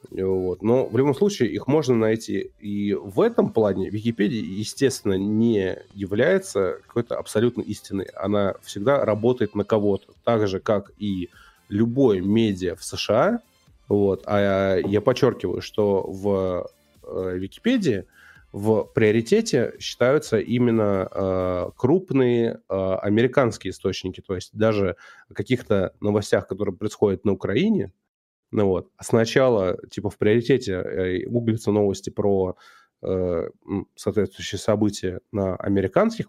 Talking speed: 110 wpm